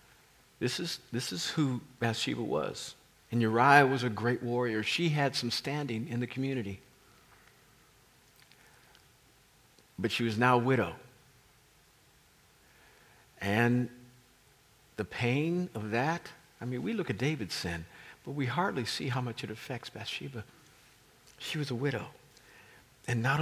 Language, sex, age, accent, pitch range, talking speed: English, male, 50-69, American, 110-130 Hz, 135 wpm